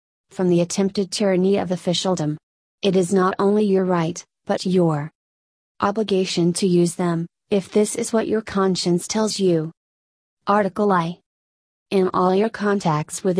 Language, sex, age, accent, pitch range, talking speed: English, female, 30-49, American, 165-200 Hz, 150 wpm